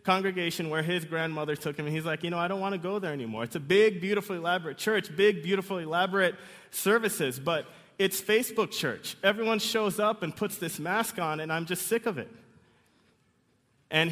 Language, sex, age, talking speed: English, male, 30-49, 200 wpm